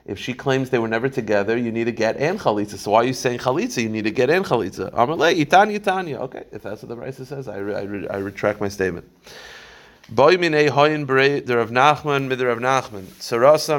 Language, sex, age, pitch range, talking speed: English, male, 30-49, 110-135 Hz, 180 wpm